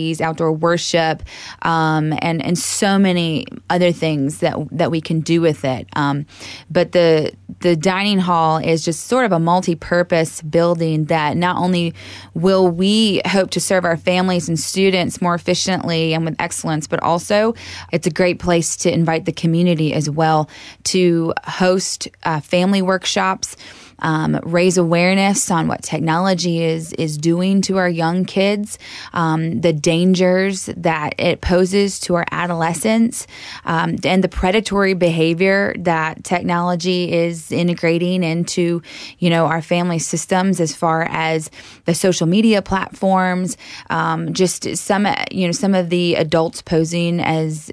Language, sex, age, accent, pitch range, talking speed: English, female, 20-39, American, 165-185 Hz, 150 wpm